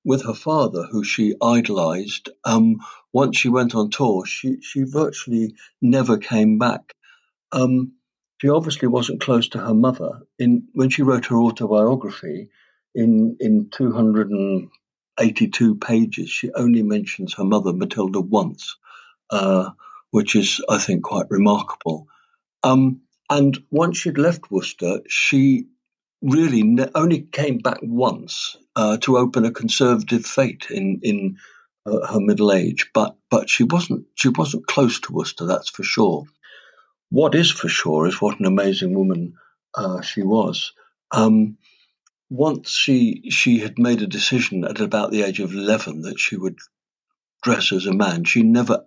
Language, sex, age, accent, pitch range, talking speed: English, male, 60-79, British, 110-155 Hz, 150 wpm